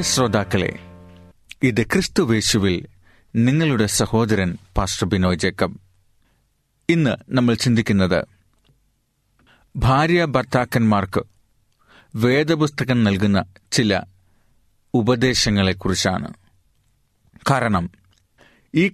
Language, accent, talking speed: Malayalam, native, 55 wpm